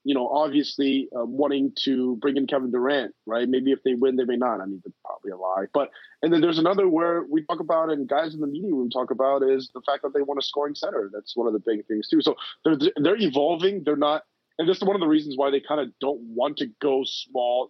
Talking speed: 270 wpm